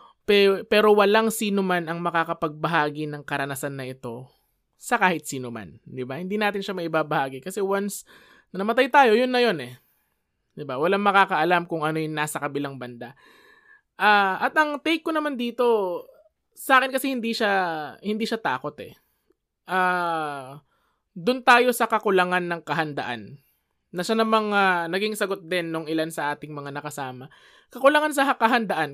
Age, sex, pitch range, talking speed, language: 20-39, male, 160-230 Hz, 155 wpm, Filipino